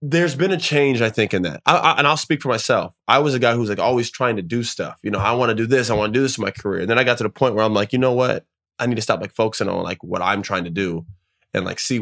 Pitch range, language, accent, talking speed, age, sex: 100-135 Hz, English, American, 345 wpm, 20-39, male